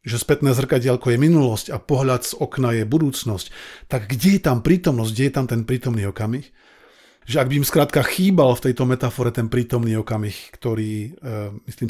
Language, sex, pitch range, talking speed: Slovak, male, 120-145 Hz, 180 wpm